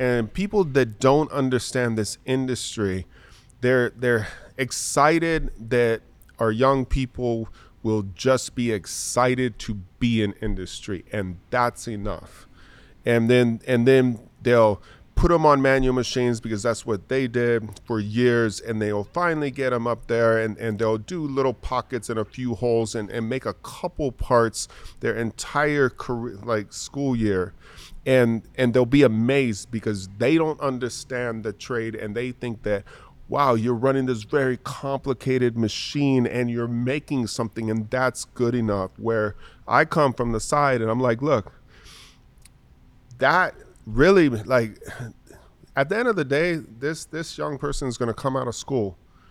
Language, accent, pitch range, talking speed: English, American, 110-130 Hz, 160 wpm